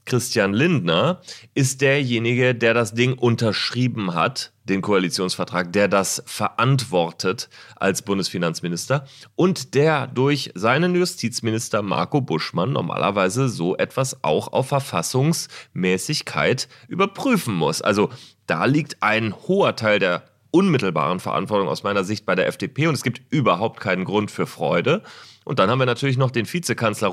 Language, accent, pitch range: German, German, 105-135 Hz